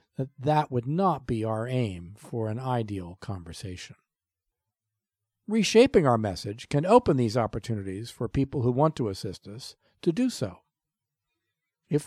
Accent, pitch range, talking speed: American, 115-180 Hz, 145 wpm